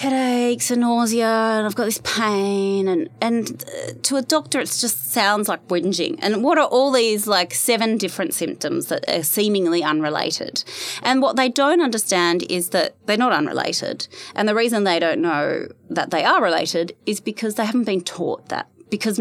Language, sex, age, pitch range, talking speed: English, female, 20-39, 160-230 Hz, 185 wpm